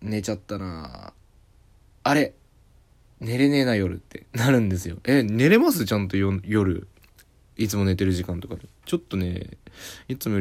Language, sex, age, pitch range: Japanese, male, 20-39, 95-120 Hz